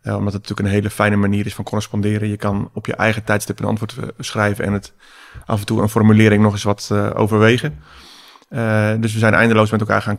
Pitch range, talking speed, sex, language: 100-110 Hz, 235 wpm, male, Dutch